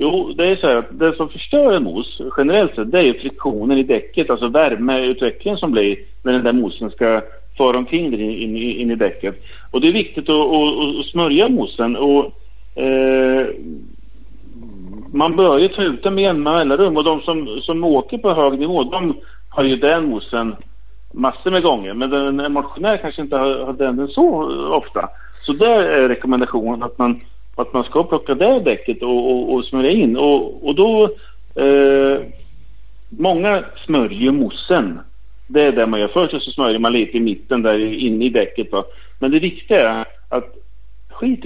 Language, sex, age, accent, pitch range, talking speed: Swedish, male, 50-69, Norwegian, 125-190 Hz, 180 wpm